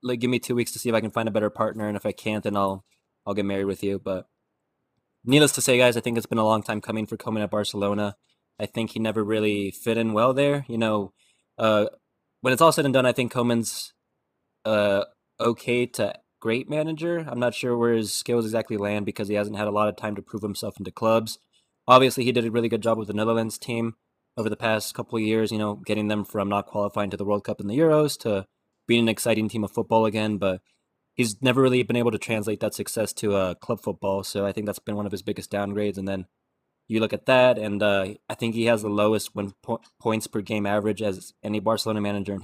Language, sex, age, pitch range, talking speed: English, male, 20-39, 105-115 Hz, 250 wpm